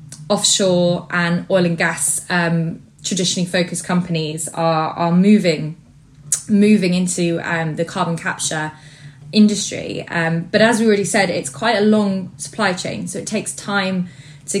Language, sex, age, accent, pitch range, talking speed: English, female, 20-39, British, 170-205 Hz, 150 wpm